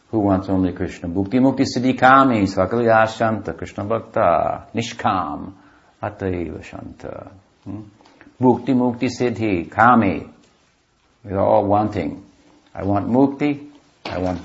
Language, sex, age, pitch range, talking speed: English, male, 60-79, 95-115 Hz, 120 wpm